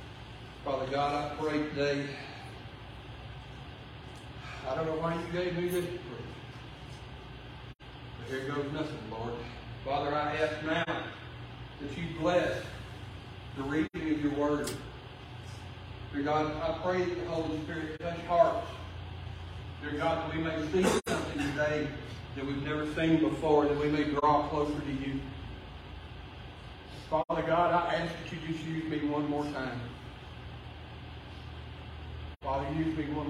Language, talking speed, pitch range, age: English, 135 wpm, 130-160 Hz, 40-59